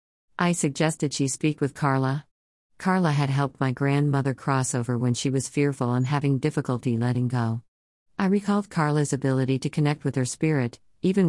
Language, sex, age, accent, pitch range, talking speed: English, female, 50-69, American, 130-155 Hz, 170 wpm